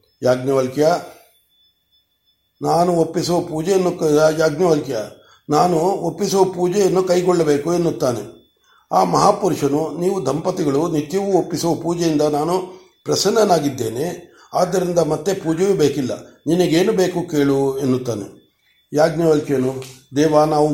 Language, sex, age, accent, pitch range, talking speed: Kannada, male, 50-69, native, 140-175 Hz, 90 wpm